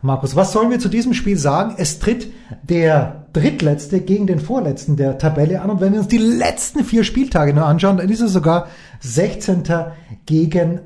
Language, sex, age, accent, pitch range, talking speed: English, male, 30-49, German, 155-195 Hz, 190 wpm